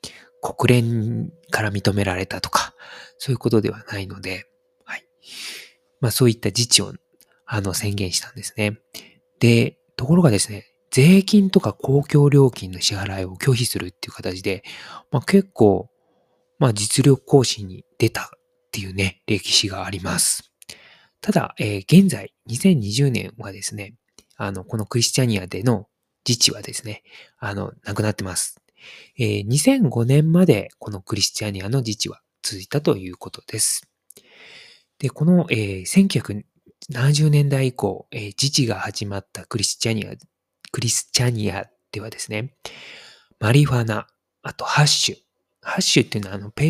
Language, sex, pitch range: Japanese, male, 100-145 Hz